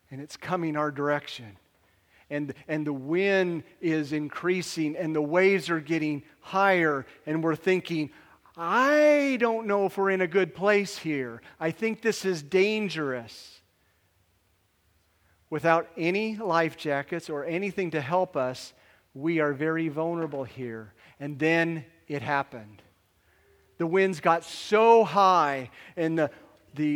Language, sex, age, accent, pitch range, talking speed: English, male, 40-59, American, 135-175 Hz, 135 wpm